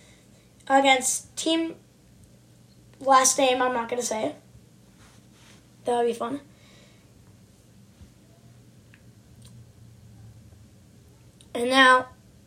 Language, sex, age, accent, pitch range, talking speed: English, female, 10-29, American, 245-320 Hz, 65 wpm